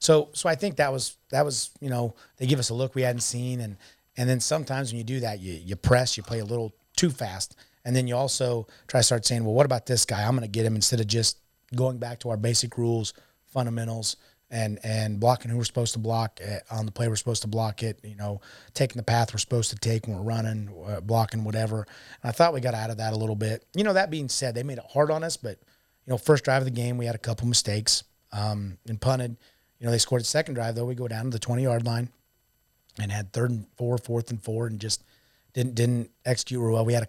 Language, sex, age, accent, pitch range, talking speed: English, male, 30-49, American, 110-125 Hz, 270 wpm